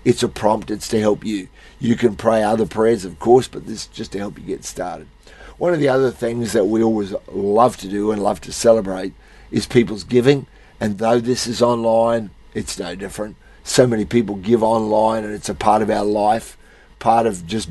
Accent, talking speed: Australian, 215 wpm